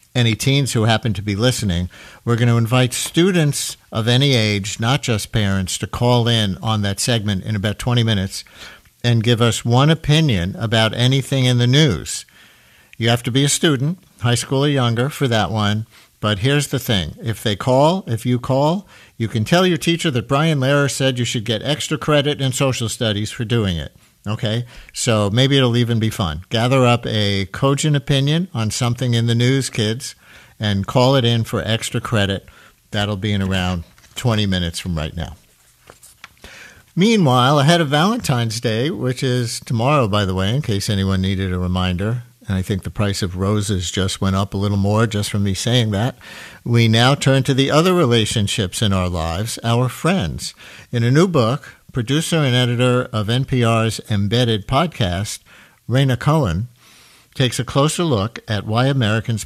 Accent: American